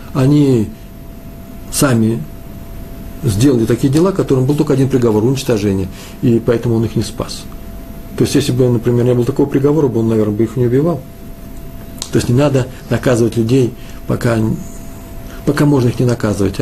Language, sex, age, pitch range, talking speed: Russian, male, 50-69, 105-145 Hz, 160 wpm